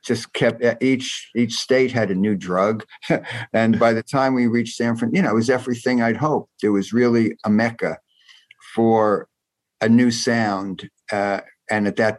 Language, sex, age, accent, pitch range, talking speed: English, male, 50-69, American, 95-115 Hz, 180 wpm